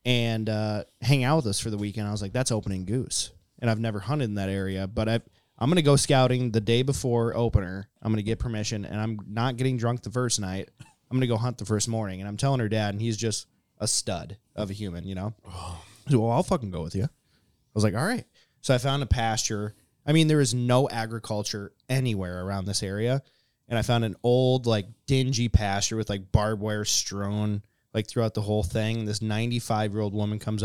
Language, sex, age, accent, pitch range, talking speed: English, male, 20-39, American, 105-125 Hz, 225 wpm